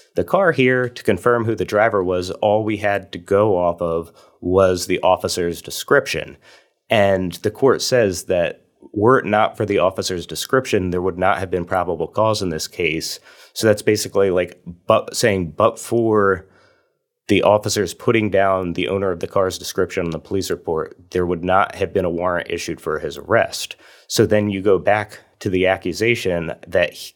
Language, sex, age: English, male, 30-49